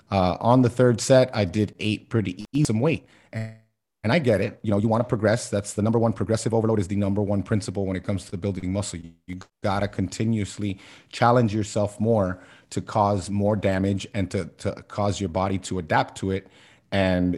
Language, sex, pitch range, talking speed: English, male, 95-115 Hz, 220 wpm